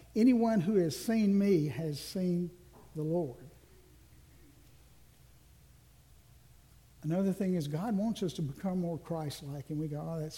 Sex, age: male, 60-79